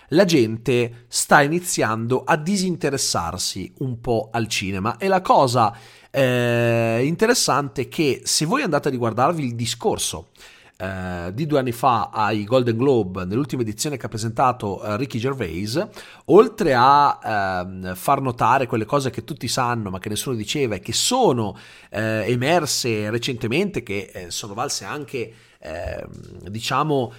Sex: male